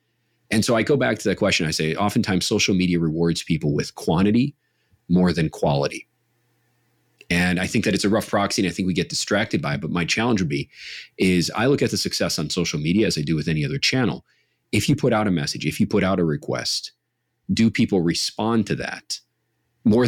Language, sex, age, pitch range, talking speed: English, male, 30-49, 90-115 Hz, 225 wpm